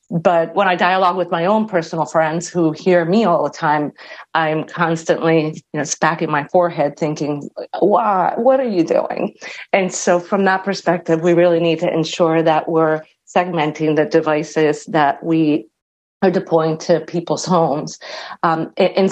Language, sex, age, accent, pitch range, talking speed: English, female, 40-59, American, 155-180 Hz, 165 wpm